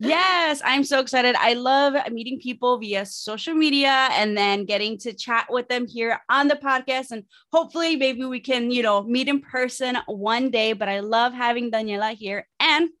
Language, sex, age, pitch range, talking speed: English, female, 20-39, 215-280 Hz, 185 wpm